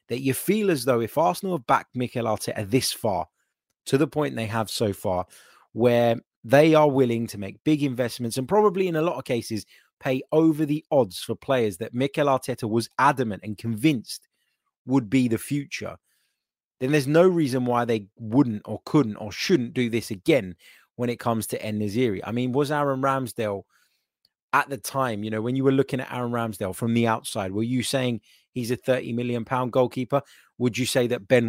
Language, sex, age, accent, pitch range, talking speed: English, male, 20-39, British, 115-140 Hz, 200 wpm